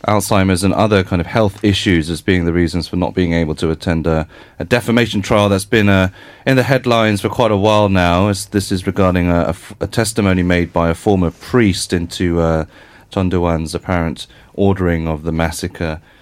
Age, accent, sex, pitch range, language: 30-49, British, male, 80-105 Hz, Korean